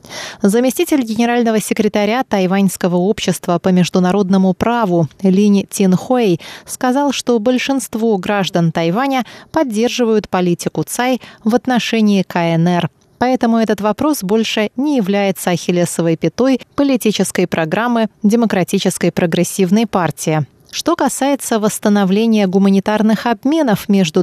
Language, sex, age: Russian, female, 20-39